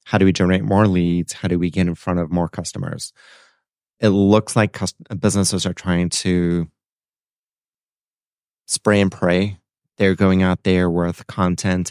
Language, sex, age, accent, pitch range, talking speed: English, male, 30-49, American, 90-100 Hz, 155 wpm